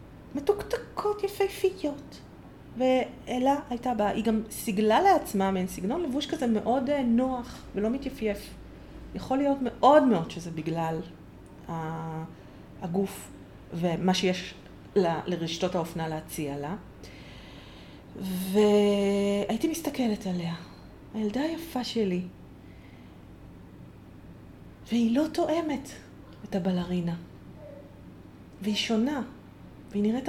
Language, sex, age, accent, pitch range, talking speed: Hebrew, female, 30-49, native, 180-275 Hz, 90 wpm